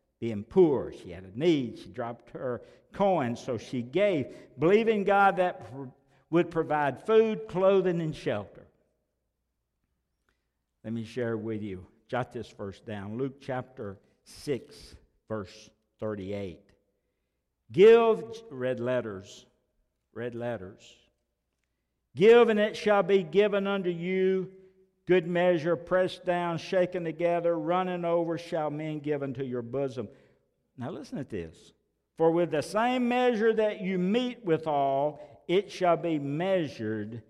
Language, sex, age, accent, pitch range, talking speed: English, male, 60-79, American, 105-175 Hz, 130 wpm